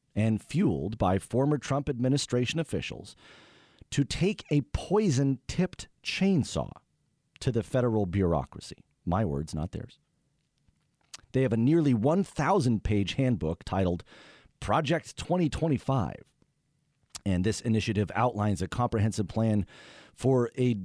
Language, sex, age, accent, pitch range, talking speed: English, male, 40-59, American, 105-145 Hz, 110 wpm